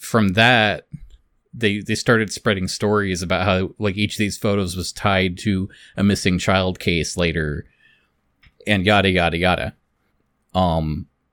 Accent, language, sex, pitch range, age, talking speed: American, English, male, 95-120 Hz, 30-49, 145 wpm